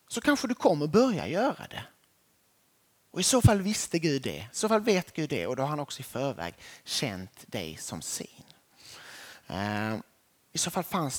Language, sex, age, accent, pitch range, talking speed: Swedish, male, 30-49, native, 135-195 Hz, 190 wpm